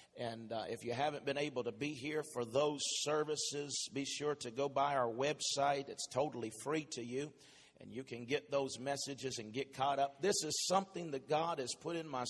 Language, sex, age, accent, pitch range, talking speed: English, male, 50-69, American, 135-165 Hz, 215 wpm